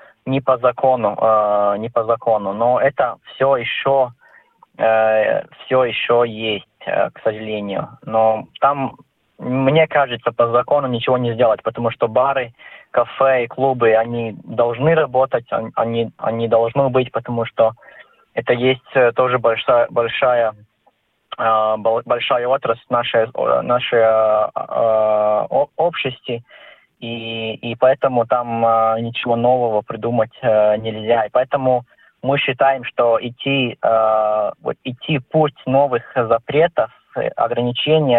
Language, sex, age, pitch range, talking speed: Russian, male, 20-39, 115-135 Hz, 115 wpm